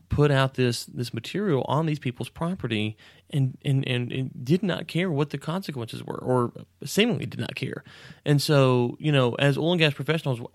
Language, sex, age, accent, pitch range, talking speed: English, male, 30-49, American, 115-140 Hz, 195 wpm